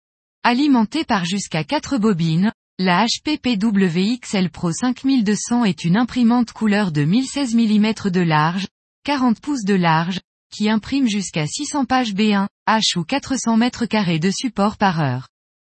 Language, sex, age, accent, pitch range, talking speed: French, female, 20-39, French, 185-245 Hz, 140 wpm